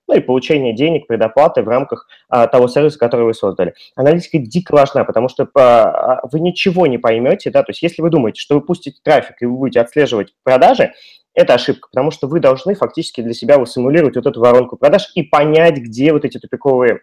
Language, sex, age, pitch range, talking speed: Russian, male, 20-39, 130-175 Hz, 210 wpm